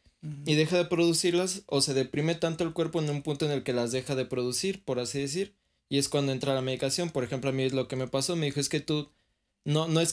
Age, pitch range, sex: 20-39, 130-155 Hz, male